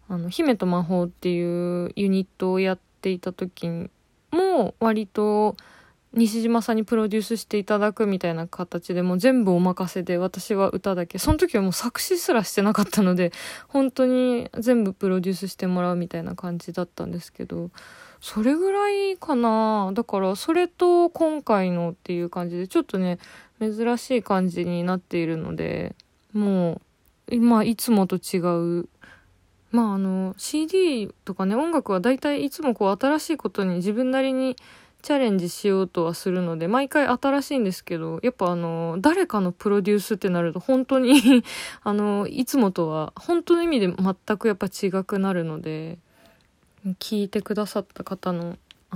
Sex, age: female, 20-39